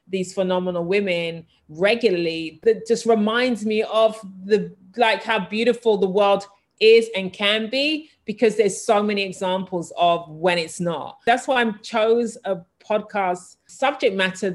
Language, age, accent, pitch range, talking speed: English, 30-49, British, 180-220 Hz, 150 wpm